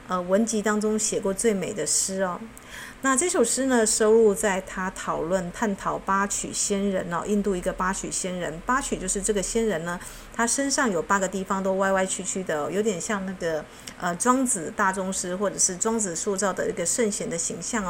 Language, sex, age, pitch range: Chinese, female, 50-69, 190-225 Hz